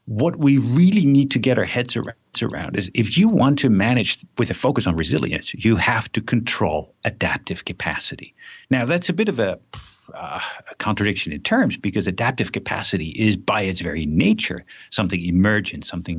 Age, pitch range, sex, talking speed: 50-69, 85-120 Hz, male, 180 wpm